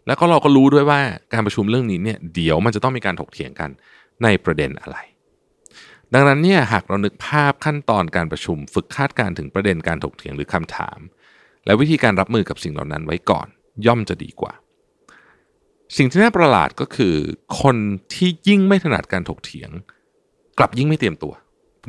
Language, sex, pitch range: Thai, male, 95-145 Hz